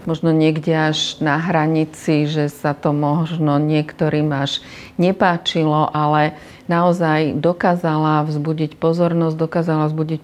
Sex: female